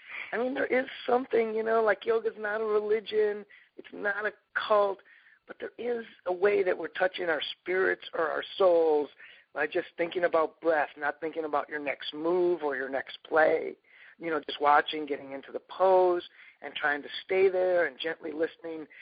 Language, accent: English, American